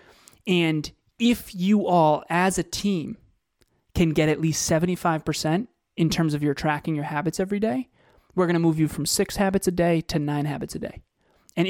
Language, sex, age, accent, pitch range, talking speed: English, male, 20-39, American, 150-180 Hz, 190 wpm